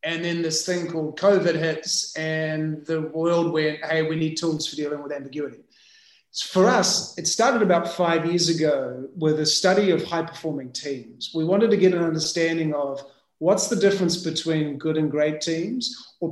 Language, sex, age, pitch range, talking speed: English, male, 30-49, 155-185 Hz, 180 wpm